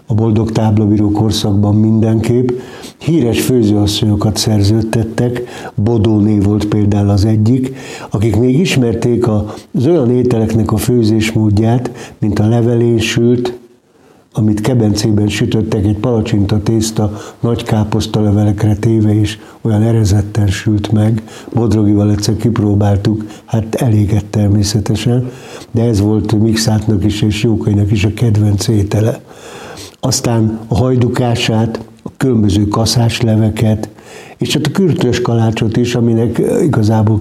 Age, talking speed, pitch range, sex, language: 60-79, 115 wpm, 105-120 Hz, male, Hungarian